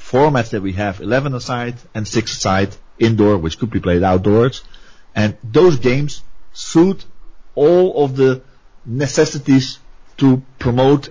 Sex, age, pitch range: male, 40-59, 105-135 Hz